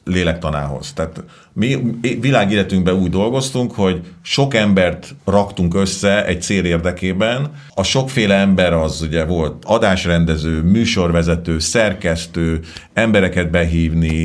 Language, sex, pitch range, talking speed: Hungarian, male, 85-115 Hz, 105 wpm